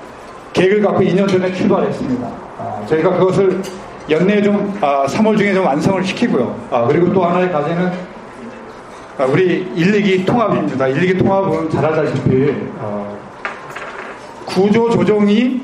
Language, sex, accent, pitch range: Korean, male, native, 180-205 Hz